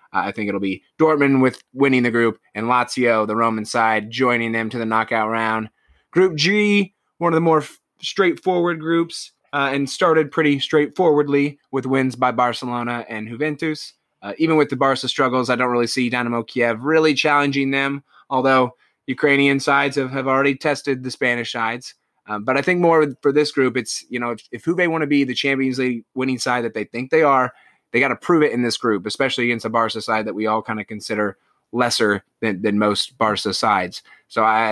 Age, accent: 20-39, American